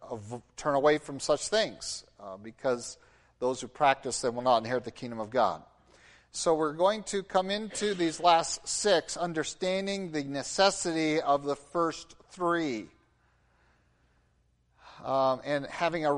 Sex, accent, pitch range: male, American, 130-180 Hz